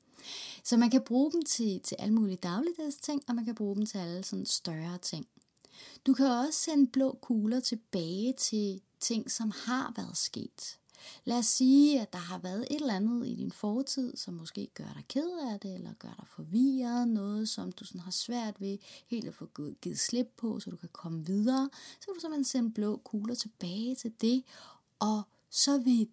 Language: Danish